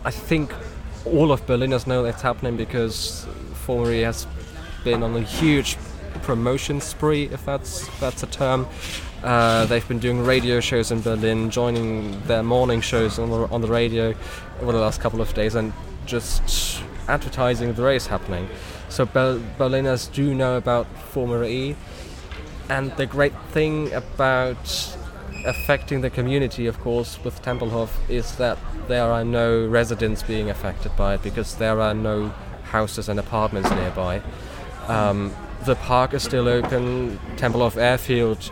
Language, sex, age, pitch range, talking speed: English, male, 20-39, 100-125 Hz, 155 wpm